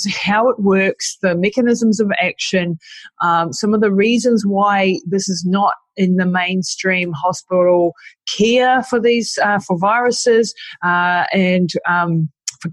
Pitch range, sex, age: 165-195 Hz, female, 30-49